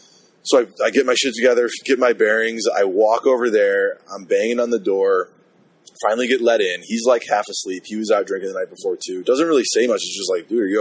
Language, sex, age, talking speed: English, male, 20-39, 250 wpm